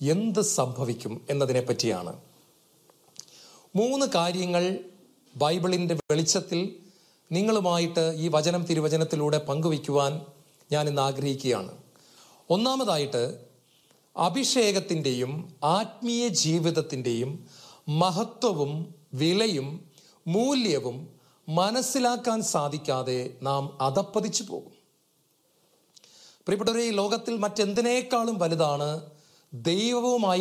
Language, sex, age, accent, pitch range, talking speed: English, male, 40-59, Indian, 150-210 Hz, 65 wpm